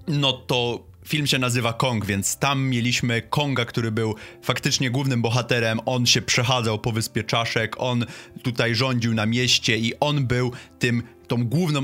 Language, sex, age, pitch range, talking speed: Polish, male, 30-49, 115-155 Hz, 155 wpm